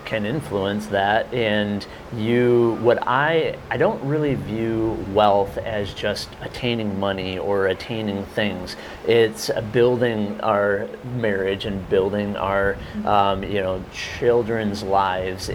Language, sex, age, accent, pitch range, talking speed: English, male, 30-49, American, 100-115 Hz, 125 wpm